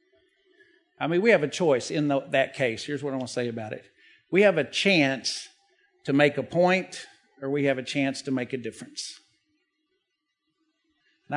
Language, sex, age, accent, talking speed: English, male, 50-69, American, 185 wpm